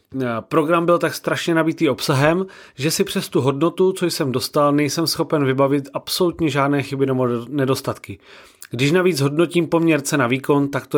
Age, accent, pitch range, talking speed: 30-49, native, 130-165 Hz, 165 wpm